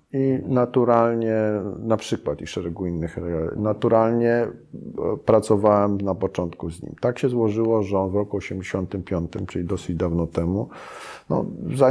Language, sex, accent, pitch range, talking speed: Polish, male, native, 95-110 Hz, 125 wpm